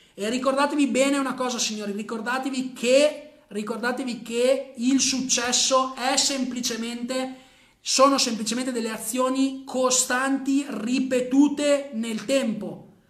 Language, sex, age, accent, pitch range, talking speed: Italian, male, 30-49, native, 225-270 Hz, 95 wpm